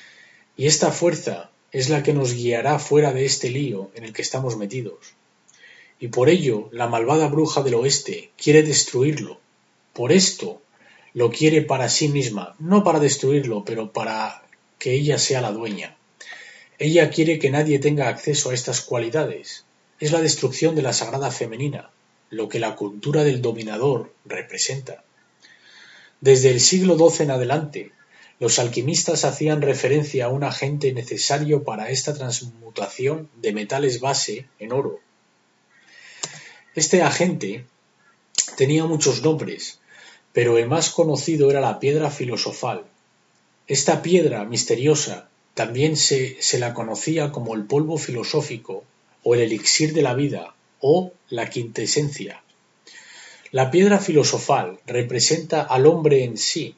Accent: Spanish